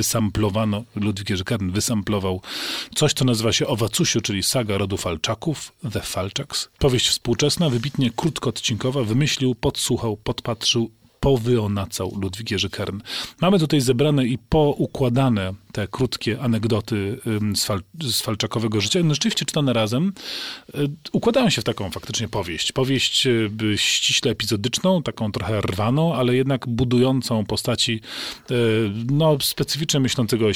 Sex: male